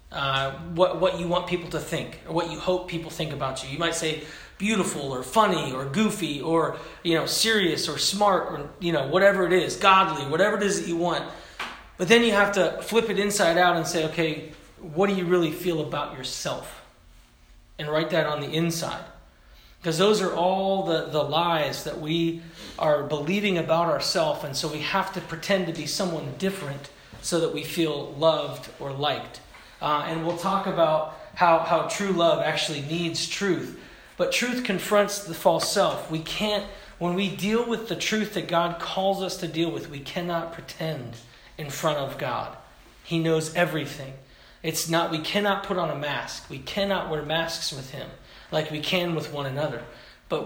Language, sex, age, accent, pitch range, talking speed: English, male, 30-49, American, 150-185 Hz, 195 wpm